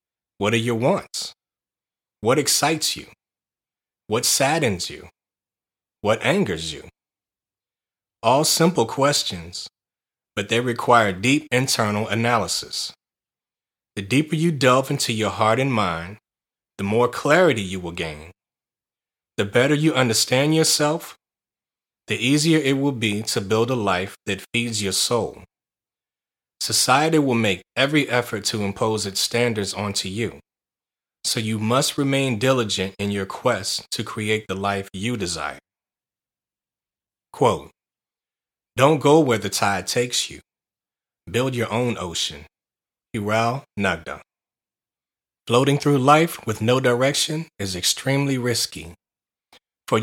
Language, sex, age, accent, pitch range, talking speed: English, male, 30-49, American, 100-135 Hz, 125 wpm